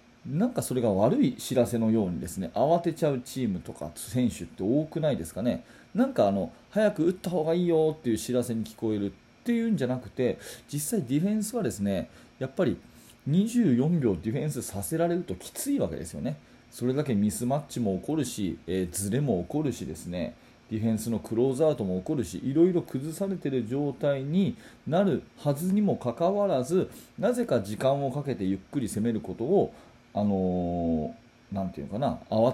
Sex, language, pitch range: male, Japanese, 105-160 Hz